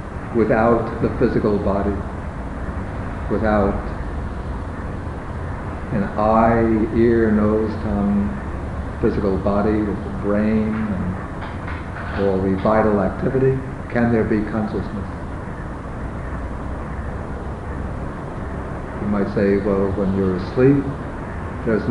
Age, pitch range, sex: 50-69, 95-115 Hz, male